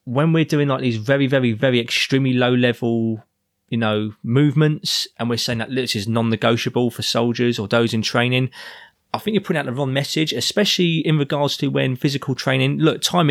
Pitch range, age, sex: 120-145 Hz, 20-39, male